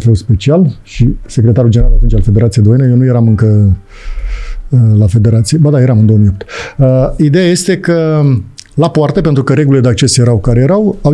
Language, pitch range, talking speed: Romanian, 120-175 Hz, 185 wpm